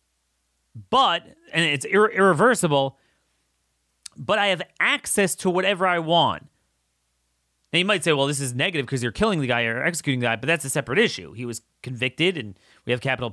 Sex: male